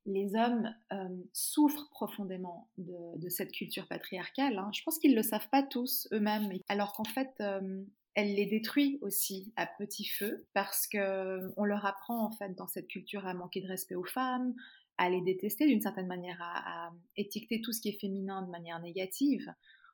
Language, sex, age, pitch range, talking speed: French, female, 30-49, 185-215 Hz, 190 wpm